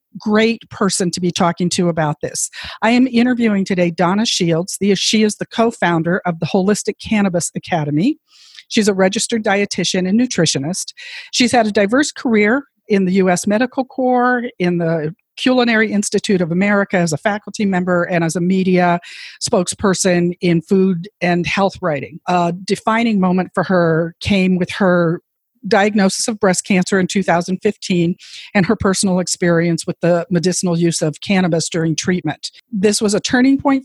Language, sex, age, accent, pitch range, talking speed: English, female, 50-69, American, 175-215 Hz, 160 wpm